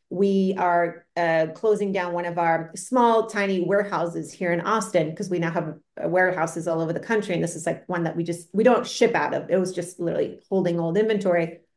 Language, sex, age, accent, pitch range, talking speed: English, female, 30-49, American, 175-225 Hz, 225 wpm